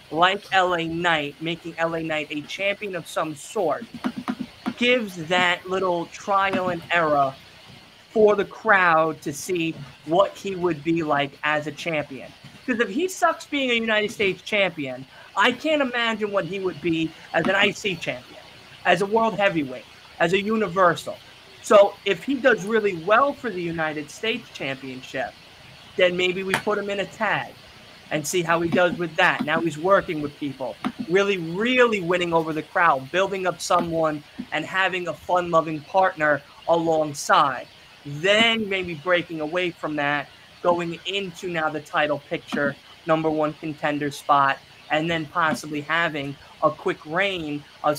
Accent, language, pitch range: American, English, 150-200 Hz